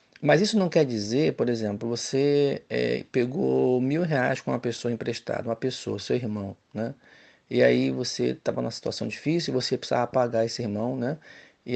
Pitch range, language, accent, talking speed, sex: 120-155 Hz, Portuguese, Brazilian, 180 wpm, male